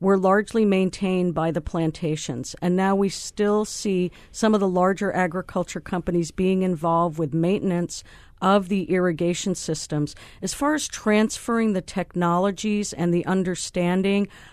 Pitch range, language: 165-190 Hz, English